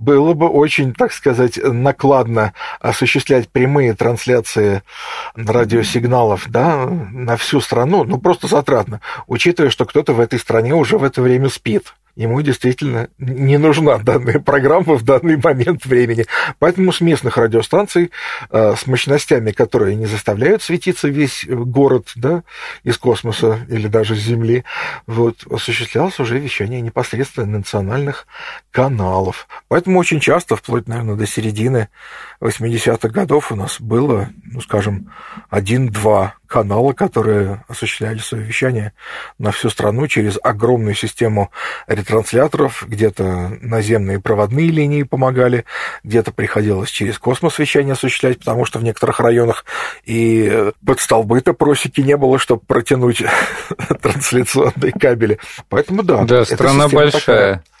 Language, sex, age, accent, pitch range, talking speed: Russian, male, 40-59, native, 110-140 Hz, 125 wpm